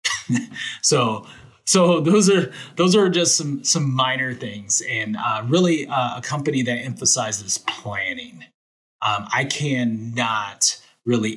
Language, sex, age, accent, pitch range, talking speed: English, male, 30-49, American, 105-130 Hz, 125 wpm